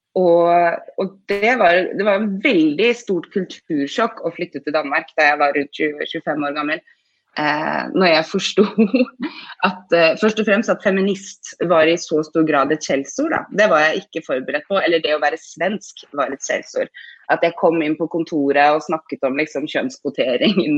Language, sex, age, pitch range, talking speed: English, female, 20-39, 155-205 Hz, 190 wpm